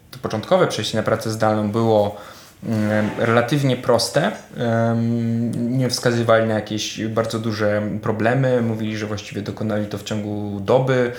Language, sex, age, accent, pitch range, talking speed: Polish, male, 20-39, native, 110-125 Hz, 130 wpm